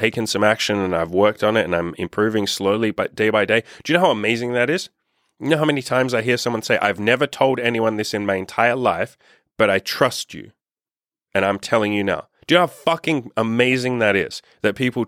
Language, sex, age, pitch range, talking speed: English, male, 30-49, 100-125 Hz, 240 wpm